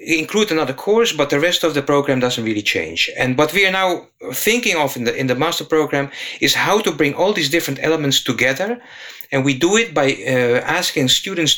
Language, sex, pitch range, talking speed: English, male, 130-165 Hz, 220 wpm